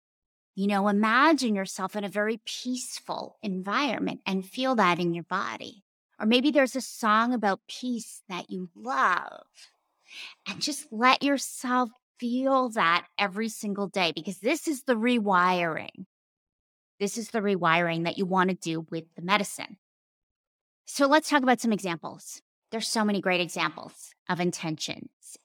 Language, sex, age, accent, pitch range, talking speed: English, female, 30-49, American, 185-250 Hz, 150 wpm